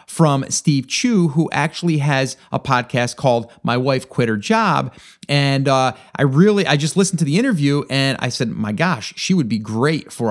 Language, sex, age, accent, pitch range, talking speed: English, male, 30-49, American, 130-185 Hz, 200 wpm